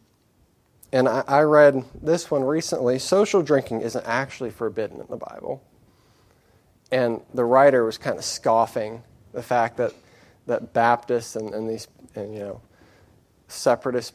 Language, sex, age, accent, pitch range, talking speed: English, male, 30-49, American, 115-145 Hz, 140 wpm